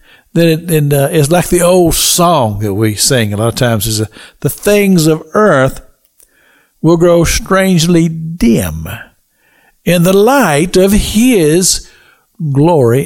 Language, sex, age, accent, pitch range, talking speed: English, male, 60-79, American, 130-175 Hz, 140 wpm